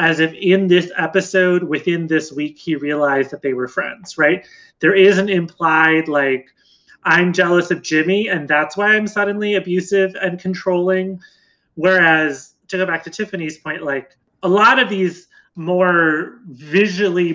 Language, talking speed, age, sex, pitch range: English, 160 wpm, 30-49, male, 160-195 Hz